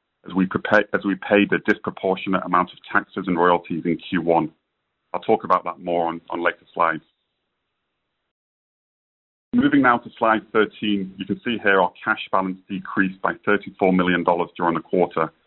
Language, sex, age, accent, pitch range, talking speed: English, male, 30-49, British, 90-100 Hz, 160 wpm